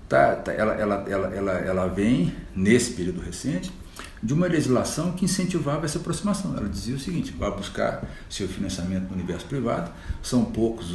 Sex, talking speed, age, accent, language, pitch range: male, 145 wpm, 60-79, Brazilian, Portuguese, 95-125 Hz